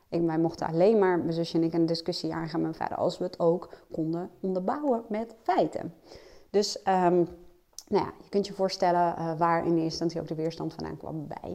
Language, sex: Dutch, female